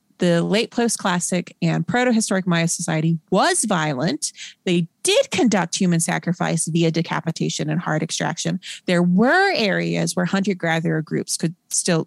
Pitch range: 170-220 Hz